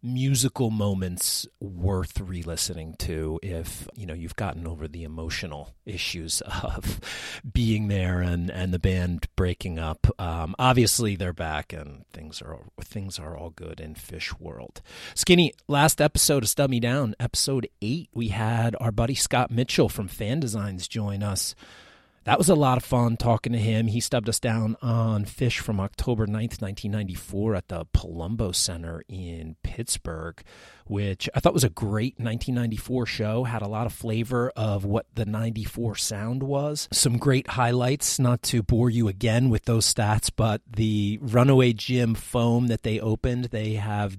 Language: English